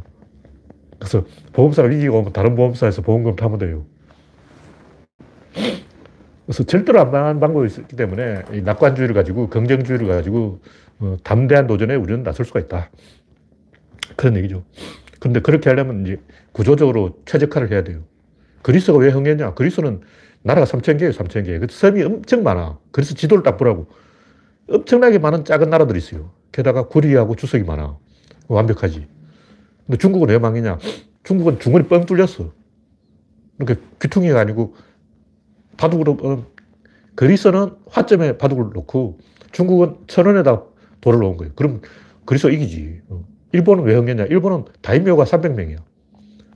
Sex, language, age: male, Korean, 40-59